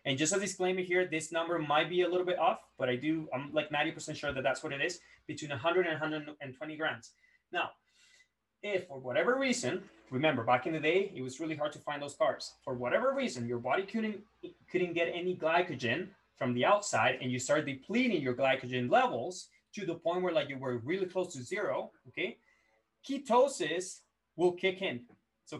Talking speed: 200 wpm